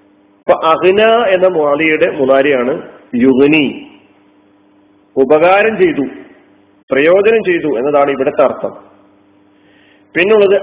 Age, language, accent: 40-59, Malayalam, native